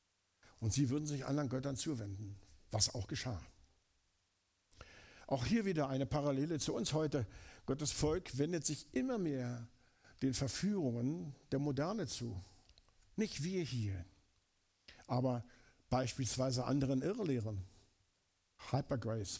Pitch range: 100-145 Hz